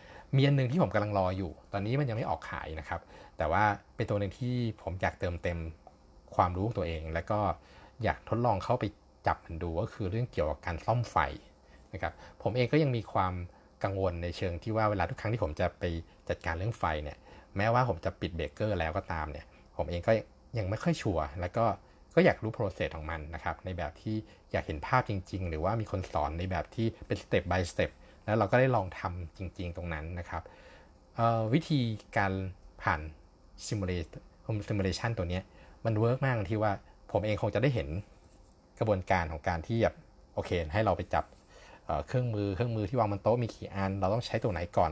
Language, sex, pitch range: Thai, male, 85-110 Hz